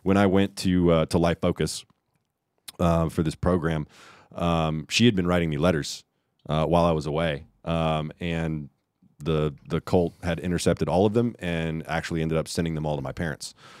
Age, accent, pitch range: 30-49, American, 80-95 Hz